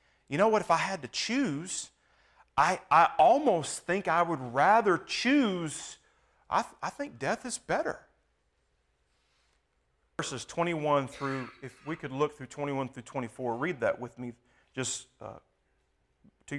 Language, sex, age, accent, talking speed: English, male, 40-59, American, 145 wpm